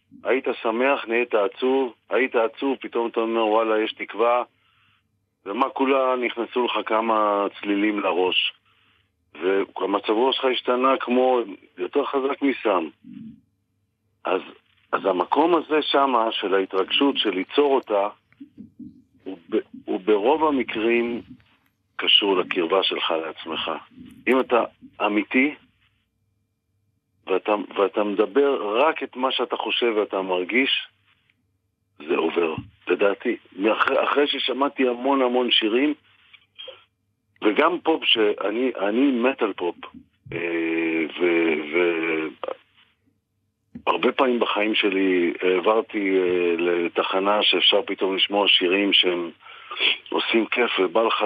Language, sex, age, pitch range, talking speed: English, male, 40-59, 100-135 Hz, 105 wpm